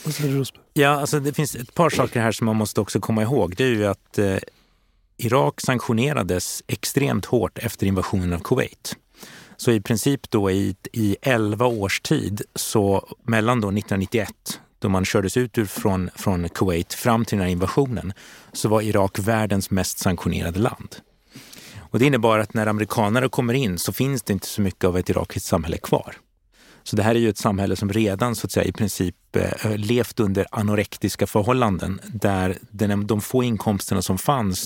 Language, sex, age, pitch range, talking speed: Swedish, male, 30-49, 95-120 Hz, 180 wpm